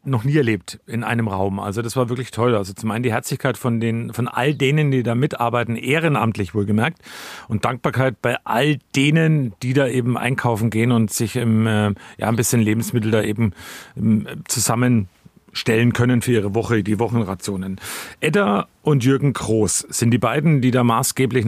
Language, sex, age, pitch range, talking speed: German, male, 40-59, 110-135 Hz, 180 wpm